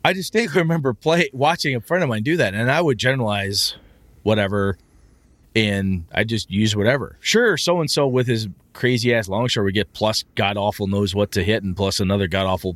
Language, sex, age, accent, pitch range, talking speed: English, male, 30-49, American, 100-140 Hz, 185 wpm